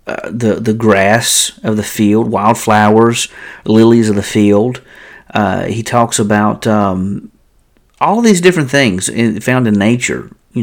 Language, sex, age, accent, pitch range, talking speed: English, male, 50-69, American, 105-125 Hz, 145 wpm